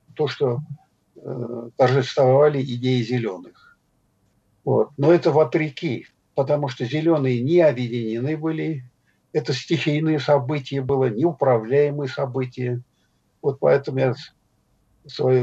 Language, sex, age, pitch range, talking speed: Russian, male, 50-69, 125-160 Hz, 105 wpm